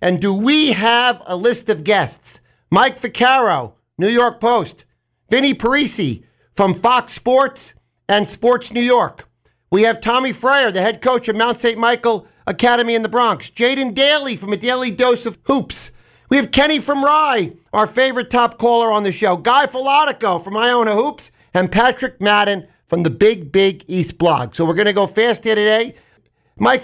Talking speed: 180 wpm